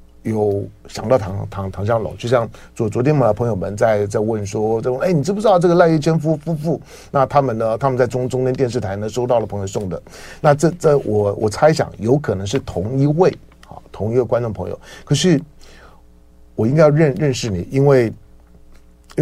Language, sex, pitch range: Chinese, male, 100-145 Hz